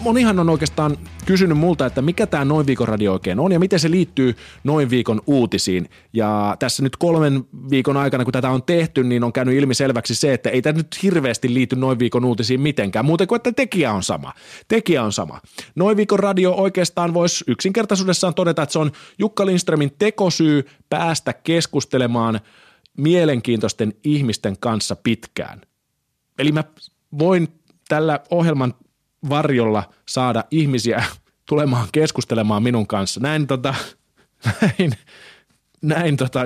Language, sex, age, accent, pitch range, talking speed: Finnish, male, 30-49, native, 120-165 Hz, 150 wpm